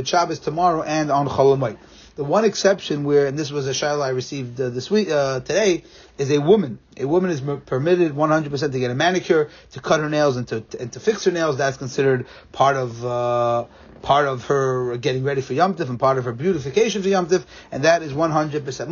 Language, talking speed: English, 225 wpm